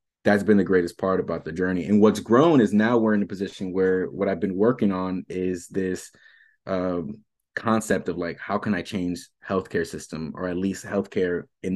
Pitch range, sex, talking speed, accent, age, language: 90-105 Hz, male, 205 wpm, American, 20-39, English